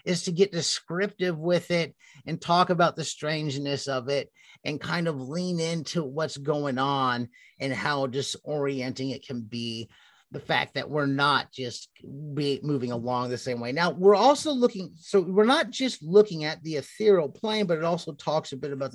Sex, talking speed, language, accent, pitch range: male, 185 wpm, English, American, 135-185 Hz